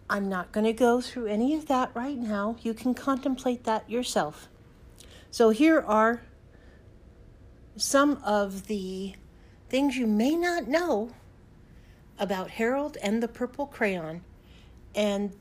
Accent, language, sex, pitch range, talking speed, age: American, English, female, 210-260 Hz, 130 wpm, 50-69